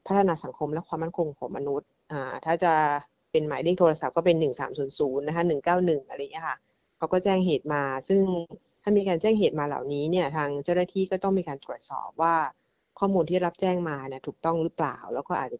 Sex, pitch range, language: female, 140-175 Hz, Thai